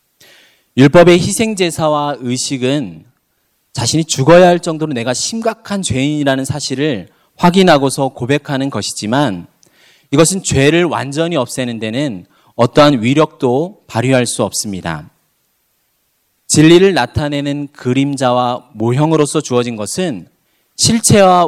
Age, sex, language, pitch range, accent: 30-49, male, Korean, 125-165 Hz, native